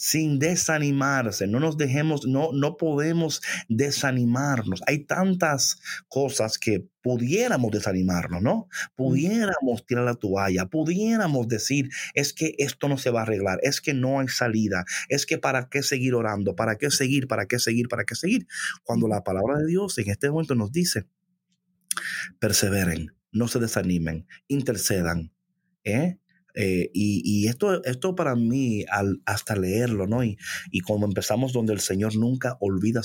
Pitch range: 100-140 Hz